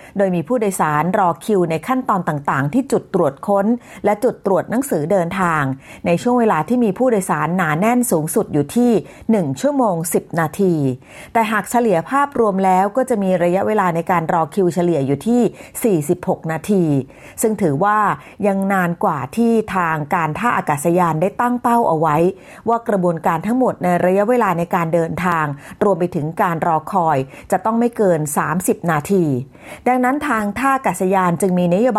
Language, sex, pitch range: Thai, female, 165-220 Hz